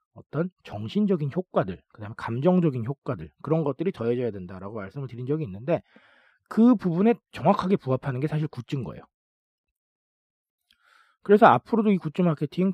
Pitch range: 115-185 Hz